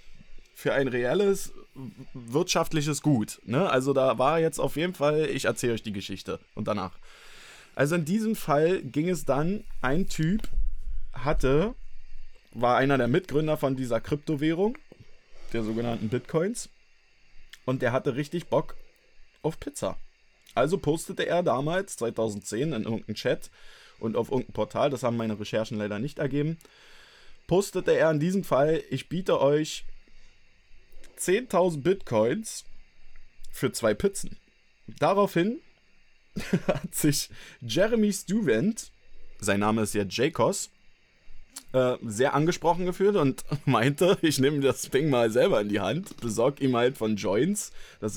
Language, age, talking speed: German, 20-39, 135 wpm